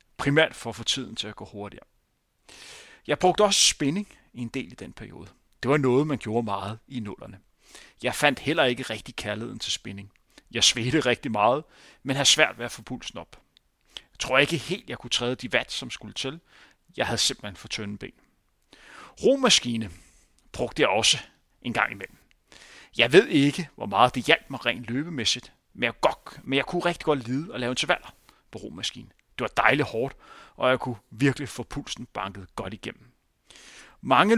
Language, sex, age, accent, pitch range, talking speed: Danish, male, 30-49, native, 115-150 Hz, 190 wpm